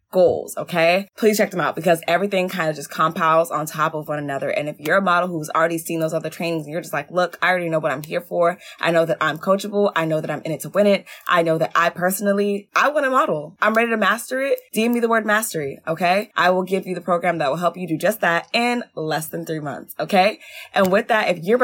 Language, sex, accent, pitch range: English, female, American, 160-215 Hz